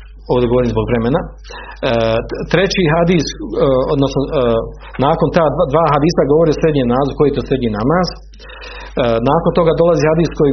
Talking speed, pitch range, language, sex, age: 165 wpm, 120-155 Hz, Croatian, male, 50-69